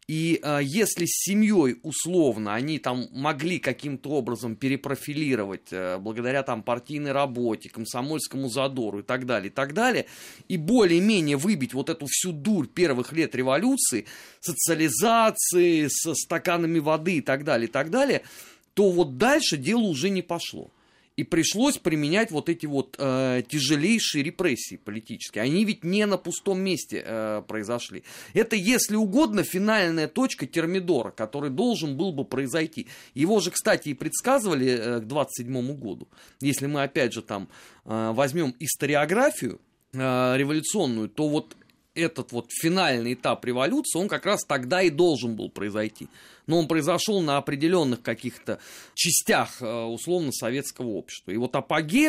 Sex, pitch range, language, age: male, 130-180 Hz, Russian, 30-49